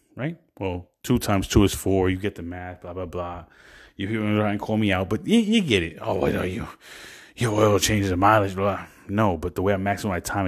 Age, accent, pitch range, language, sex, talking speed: 30-49, American, 95-120 Hz, English, male, 250 wpm